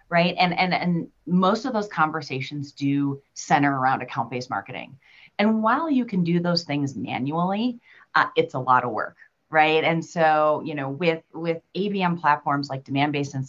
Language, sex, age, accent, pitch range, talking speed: English, female, 30-49, American, 140-180 Hz, 175 wpm